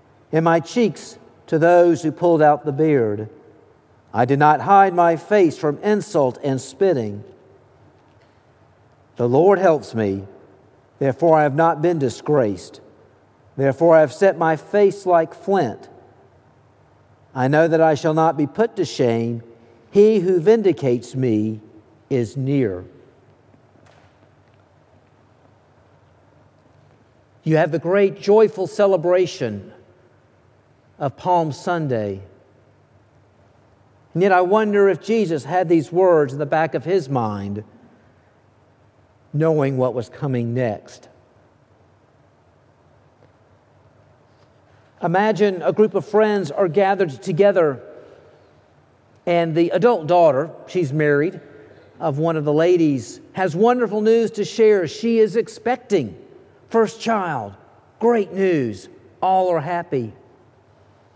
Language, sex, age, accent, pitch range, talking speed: English, male, 50-69, American, 115-185 Hz, 115 wpm